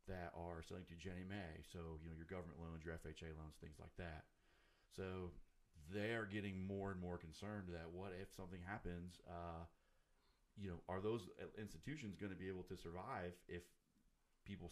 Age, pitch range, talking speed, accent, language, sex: 40-59, 85-105 Hz, 185 wpm, American, English, male